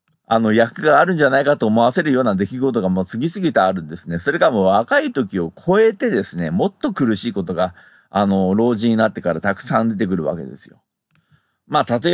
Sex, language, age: male, Japanese, 40-59